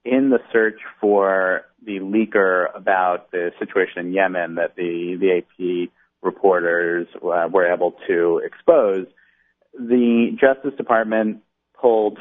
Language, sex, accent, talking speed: English, male, American, 125 wpm